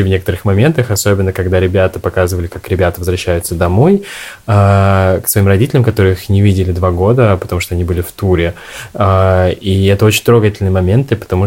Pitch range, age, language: 90-105 Hz, 20-39, Russian